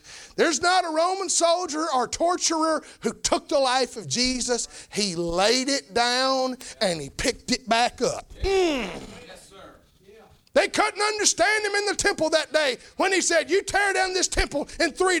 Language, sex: English, male